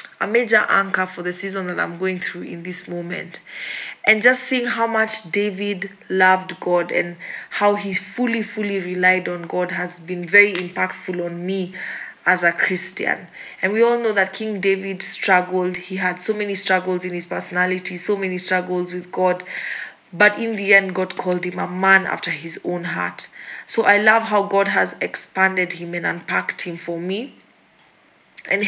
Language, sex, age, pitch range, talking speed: English, female, 20-39, 180-205 Hz, 180 wpm